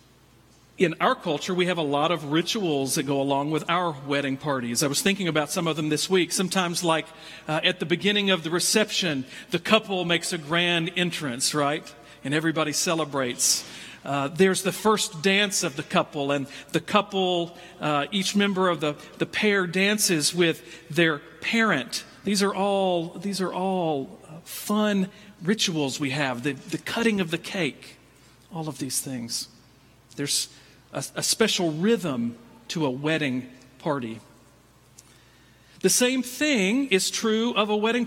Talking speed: 160 wpm